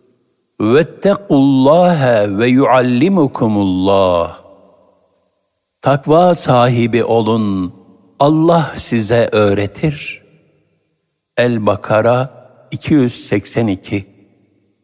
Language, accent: Turkish, native